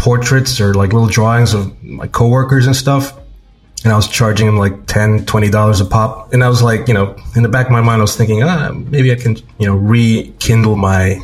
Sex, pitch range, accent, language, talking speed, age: male, 100-115 Hz, American, English, 230 wpm, 20-39